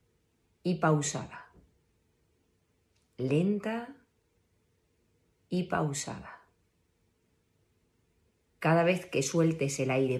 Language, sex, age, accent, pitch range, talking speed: Spanish, female, 40-59, Spanish, 115-170 Hz, 65 wpm